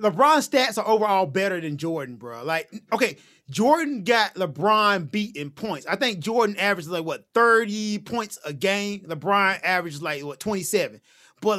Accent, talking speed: American, 165 wpm